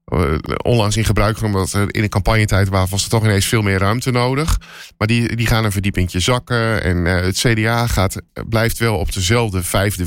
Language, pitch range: Dutch, 95-120 Hz